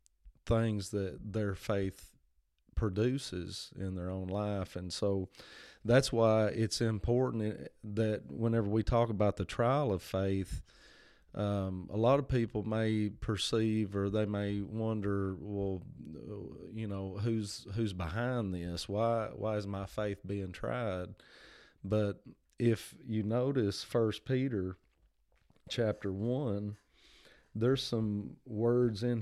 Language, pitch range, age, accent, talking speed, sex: English, 100-115 Hz, 30-49, American, 125 wpm, male